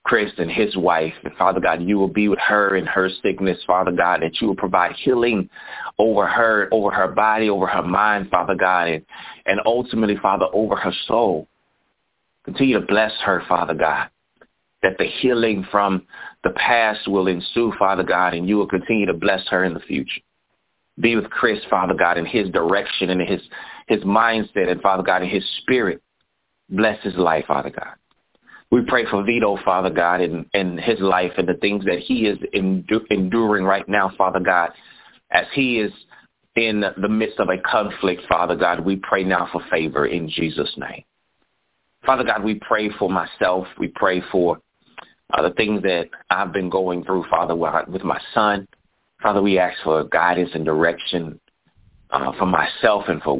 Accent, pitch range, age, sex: American, 90-105 Hz, 30-49, male